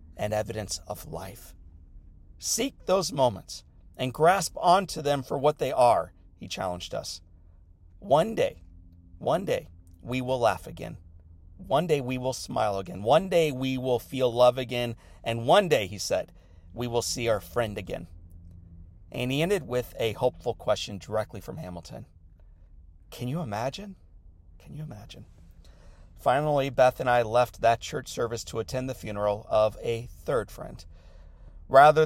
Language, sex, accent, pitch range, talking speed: English, male, American, 85-135 Hz, 155 wpm